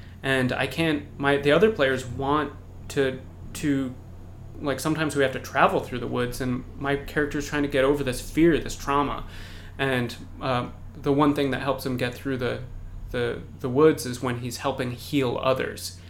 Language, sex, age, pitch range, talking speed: English, male, 30-49, 105-140 Hz, 190 wpm